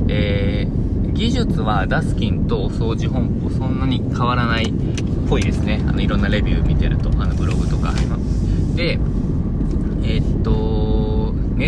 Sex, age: male, 20-39